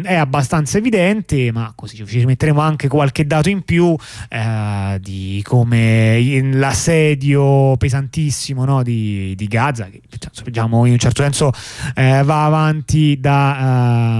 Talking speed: 135 wpm